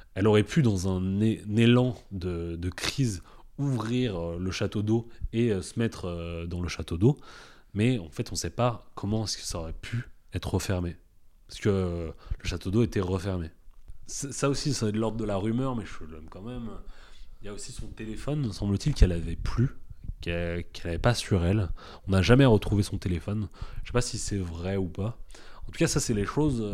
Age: 30-49